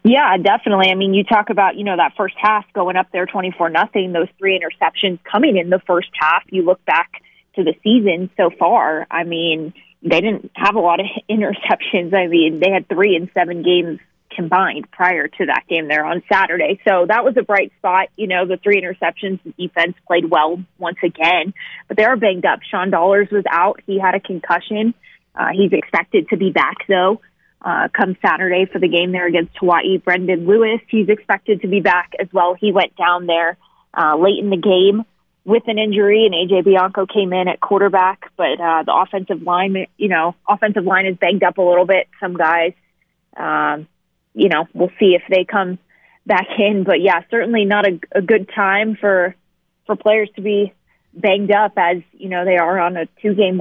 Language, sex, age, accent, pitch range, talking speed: English, female, 20-39, American, 175-205 Hz, 205 wpm